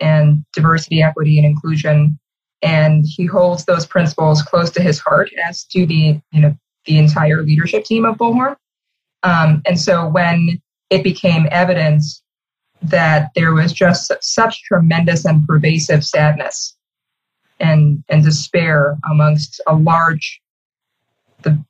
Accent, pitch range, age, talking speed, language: American, 150-180 Hz, 20-39, 135 wpm, English